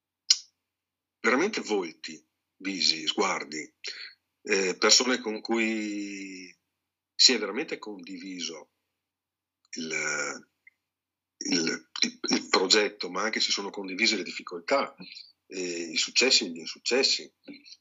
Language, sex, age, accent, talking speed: Italian, male, 50-69, native, 100 wpm